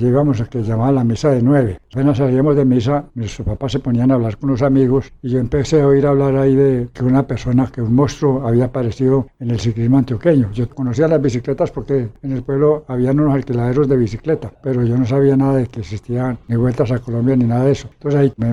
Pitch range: 120-140 Hz